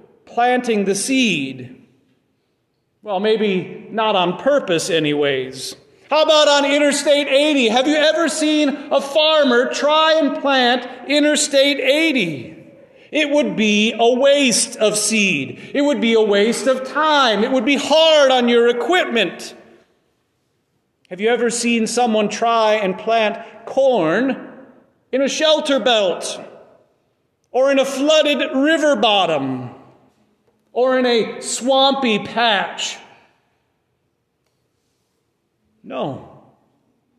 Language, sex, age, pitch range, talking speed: English, male, 40-59, 200-275 Hz, 115 wpm